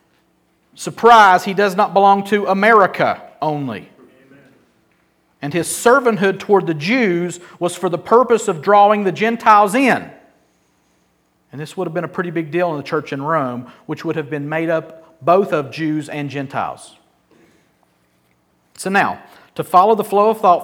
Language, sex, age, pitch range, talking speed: English, male, 40-59, 155-200 Hz, 165 wpm